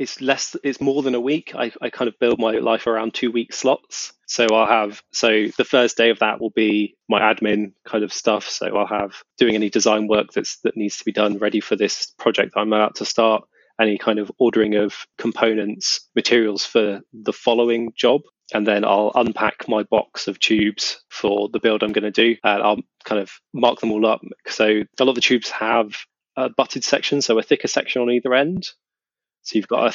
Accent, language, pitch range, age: British, English, 105-115 Hz, 20-39